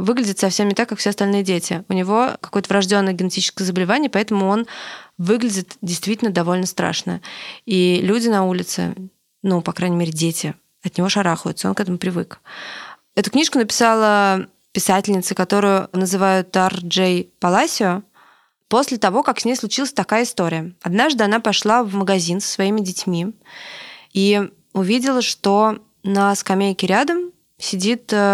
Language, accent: Russian, native